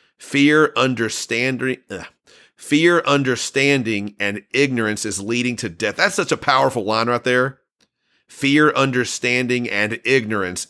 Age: 40-59